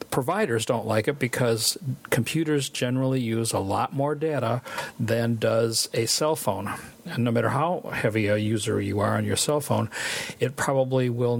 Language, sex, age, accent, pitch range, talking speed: English, male, 50-69, American, 115-135 Hz, 175 wpm